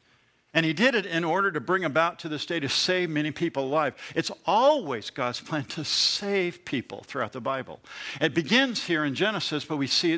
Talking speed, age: 205 wpm, 60-79